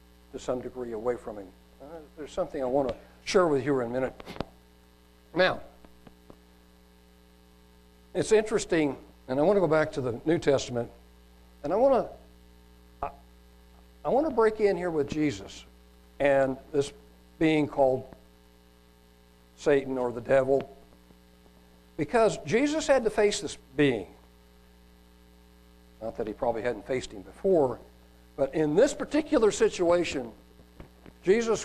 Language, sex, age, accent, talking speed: English, male, 60-79, American, 140 wpm